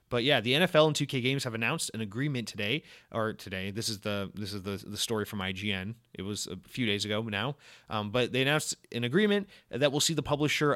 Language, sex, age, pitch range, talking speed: English, male, 30-49, 110-140 Hz, 235 wpm